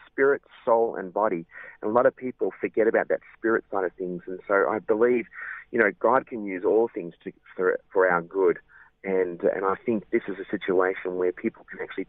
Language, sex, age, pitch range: English, male, 30-49, 90-115 Hz